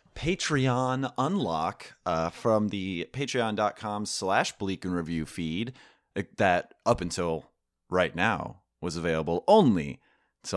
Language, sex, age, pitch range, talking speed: English, male, 30-49, 85-120 Hz, 115 wpm